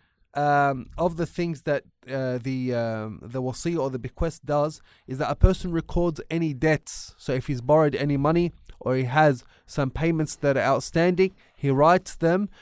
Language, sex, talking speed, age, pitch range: English, male, 180 wpm, 30-49, 135-170 Hz